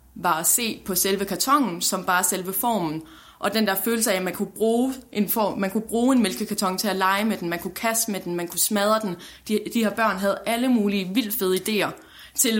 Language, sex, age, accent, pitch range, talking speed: Danish, female, 20-39, native, 185-220 Hz, 245 wpm